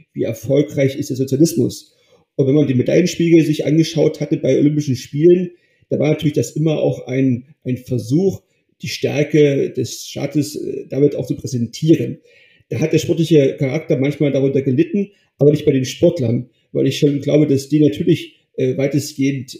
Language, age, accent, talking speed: German, 40-59, German, 165 wpm